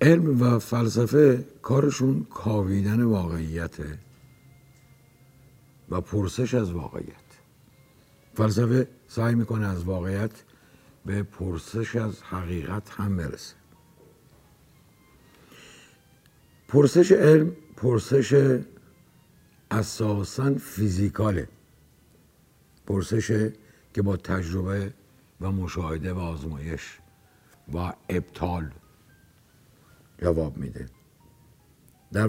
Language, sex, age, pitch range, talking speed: Persian, male, 60-79, 95-130 Hz, 70 wpm